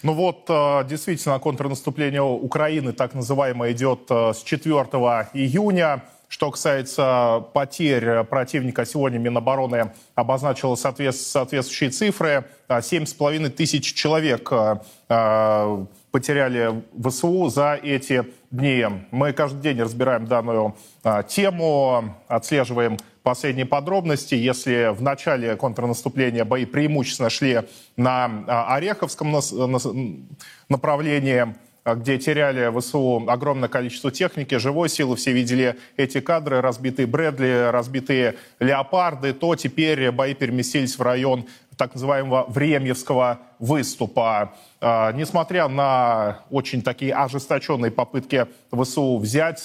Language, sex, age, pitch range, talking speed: Russian, male, 20-39, 125-145 Hz, 100 wpm